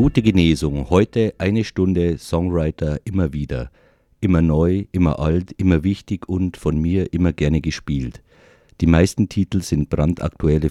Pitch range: 70-85 Hz